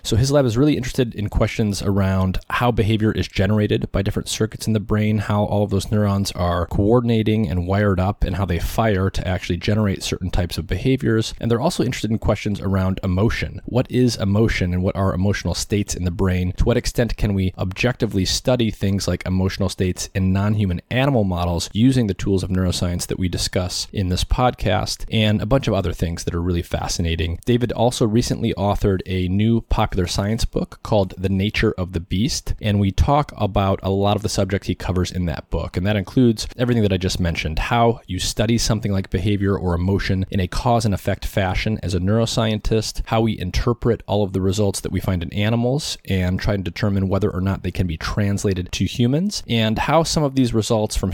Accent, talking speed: American, 210 wpm